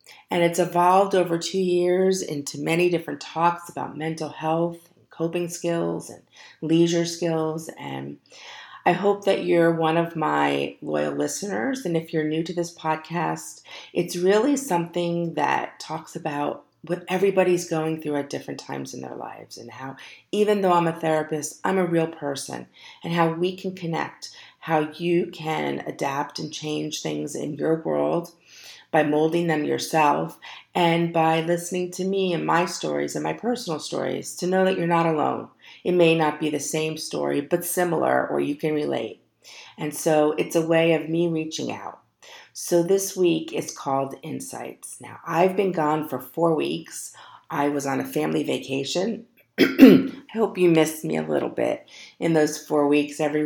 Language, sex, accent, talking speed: English, female, American, 170 wpm